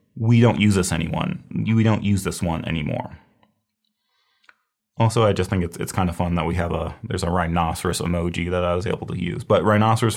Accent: American